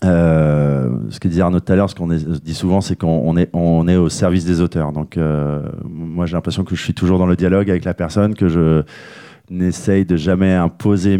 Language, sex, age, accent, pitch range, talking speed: French, male, 30-49, French, 85-105 Hz, 235 wpm